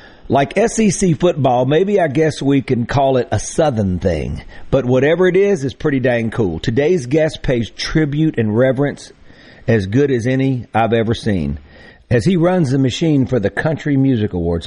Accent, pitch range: American, 115-155 Hz